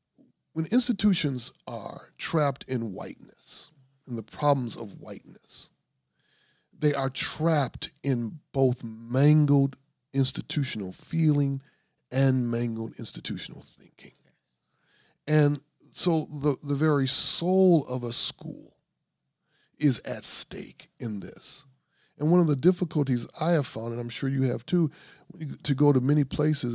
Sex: male